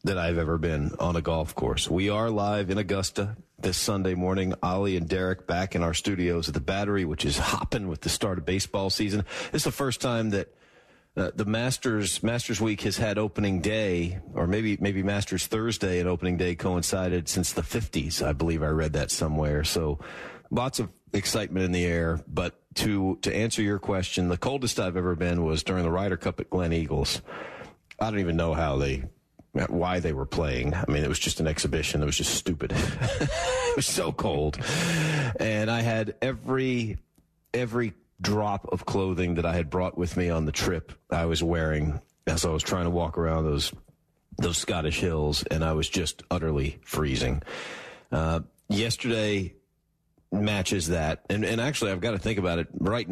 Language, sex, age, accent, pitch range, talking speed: English, male, 40-59, American, 85-105 Hz, 190 wpm